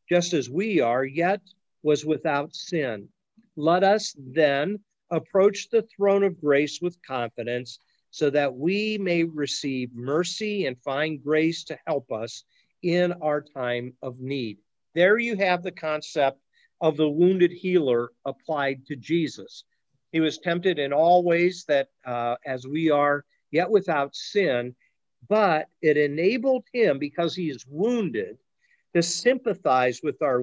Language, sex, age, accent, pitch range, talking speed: English, male, 50-69, American, 135-180 Hz, 145 wpm